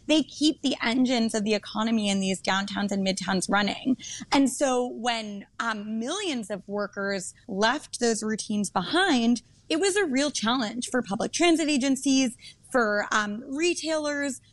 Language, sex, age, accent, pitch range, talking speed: English, female, 20-39, American, 200-265 Hz, 150 wpm